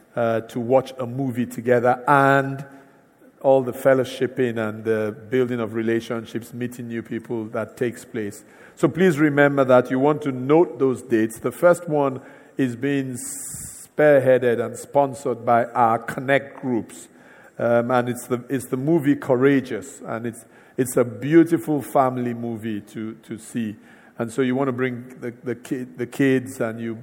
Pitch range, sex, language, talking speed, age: 115-135 Hz, male, English, 165 wpm, 50-69